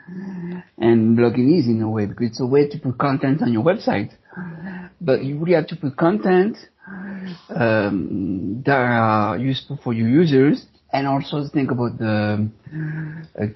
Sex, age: male, 60-79